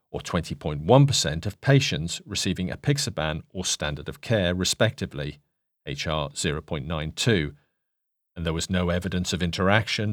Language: English